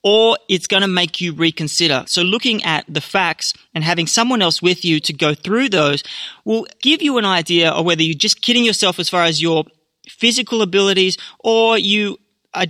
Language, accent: English, Australian